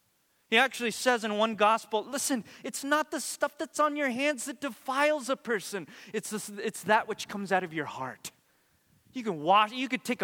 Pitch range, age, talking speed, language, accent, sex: 140-205 Hz, 20-39, 205 wpm, English, American, male